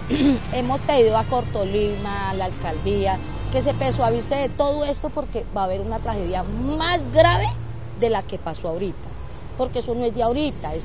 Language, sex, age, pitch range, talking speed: Spanish, female, 30-49, 200-285 Hz, 175 wpm